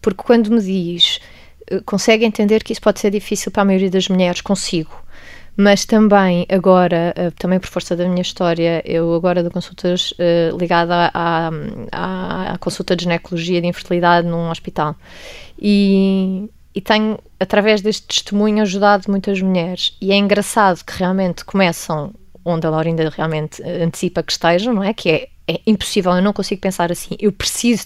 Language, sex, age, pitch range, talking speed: Portuguese, female, 20-39, 180-215 Hz, 165 wpm